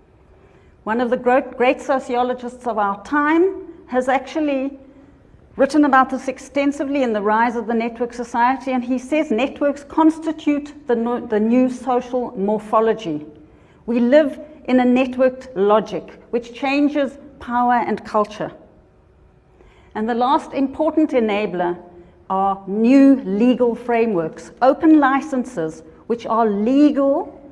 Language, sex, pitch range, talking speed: English, female, 210-275 Hz, 120 wpm